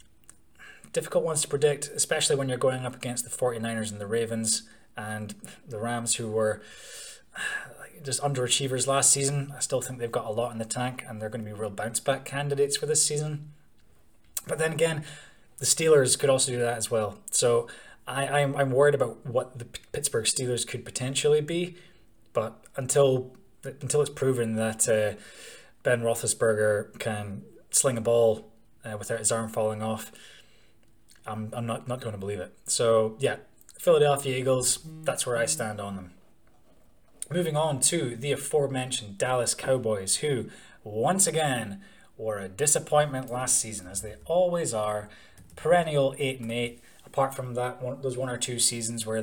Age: 20-39